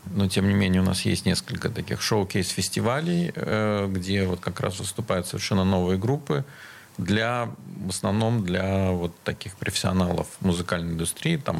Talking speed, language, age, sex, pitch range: 145 wpm, Russian, 40-59, male, 95-115 Hz